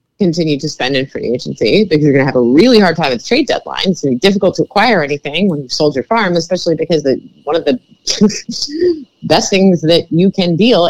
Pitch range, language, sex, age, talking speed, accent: 160-250 Hz, English, female, 30-49, 235 wpm, American